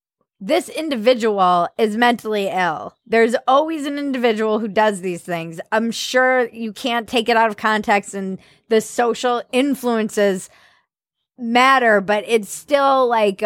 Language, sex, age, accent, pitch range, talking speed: English, female, 20-39, American, 200-245 Hz, 140 wpm